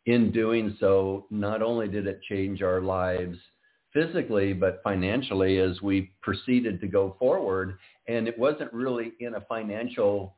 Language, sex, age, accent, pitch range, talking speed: English, male, 50-69, American, 95-110 Hz, 150 wpm